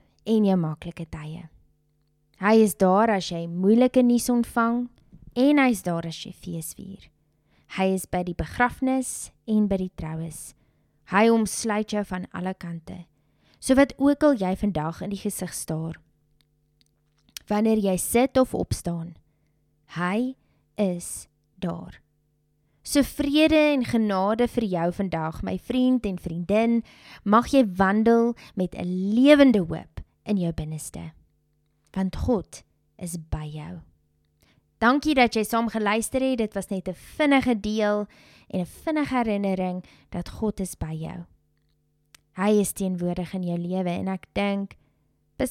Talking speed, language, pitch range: 140 wpm, English, 170-230 Hz